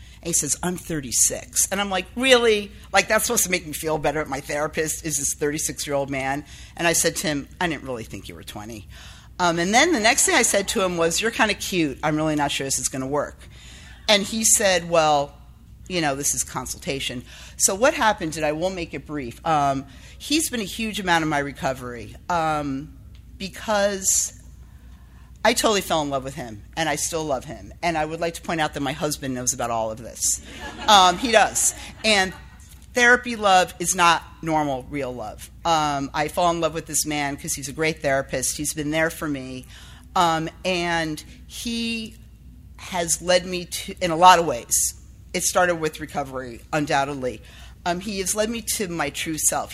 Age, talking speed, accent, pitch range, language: 50-69, 205 wpm, American, 140-185 Hz, English